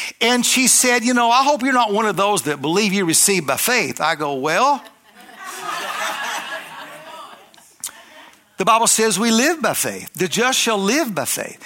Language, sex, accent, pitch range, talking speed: English, male, American, 185-250 Hz, 175 wpm